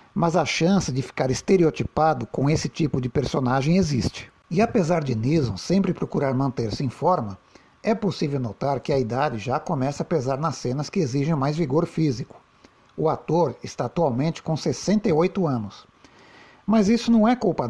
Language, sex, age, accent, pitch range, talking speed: Portuguese, male, 60-79, Brazilian, 130-180 Hz, 170 wpm